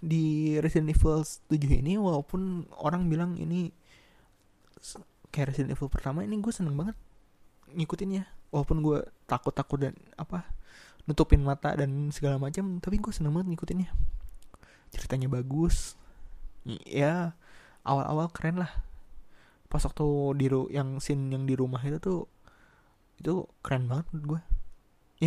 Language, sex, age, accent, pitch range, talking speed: Indonesian, male, 20-39, native, 125-160 Hz, 130 wpm